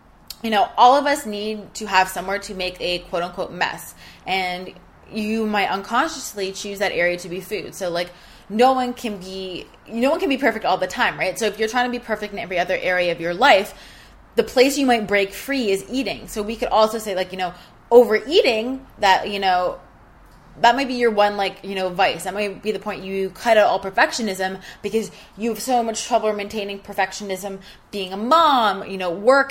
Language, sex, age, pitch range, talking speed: English, female, 20-39, 185-225 Hz, 220 wpm